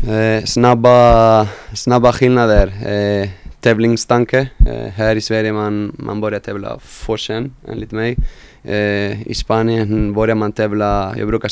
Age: 20-39